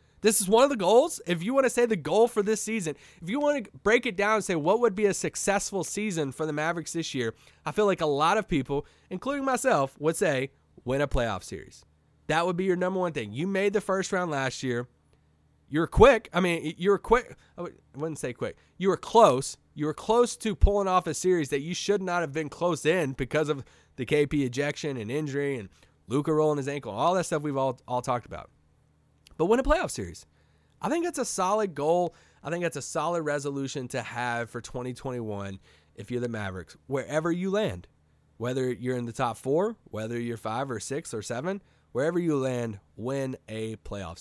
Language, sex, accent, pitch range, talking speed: English, male, American, 120-180 Hz, 220 wpm